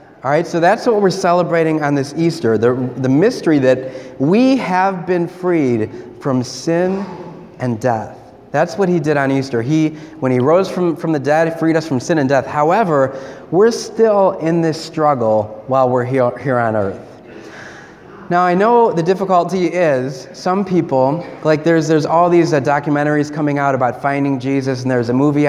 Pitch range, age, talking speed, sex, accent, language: 130-175 Hz, 30-49, 185 wpm, male, American, English